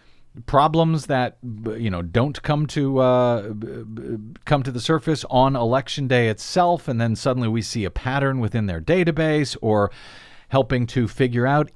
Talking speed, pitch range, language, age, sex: 160 wpm, 110-140 Hz, English, 50-69, male